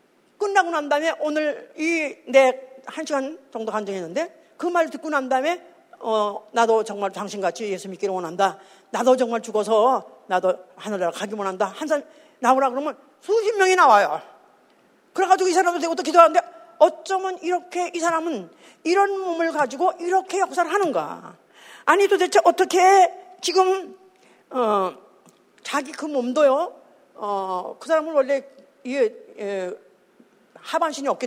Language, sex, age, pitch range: Korean, female, 40-59, 215-335 Hz